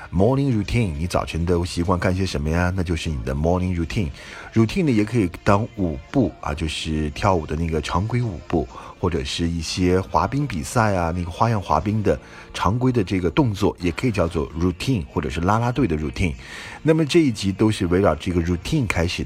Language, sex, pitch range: Chinese, male, 80-110 Hz